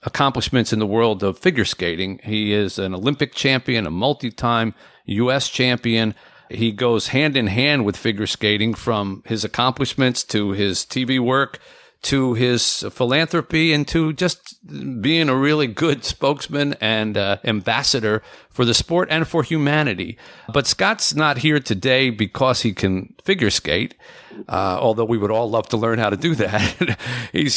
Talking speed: 155 wpm